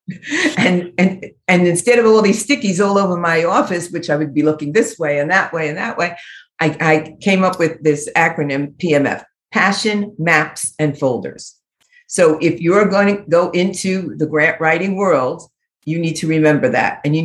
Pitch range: 155-200 Hz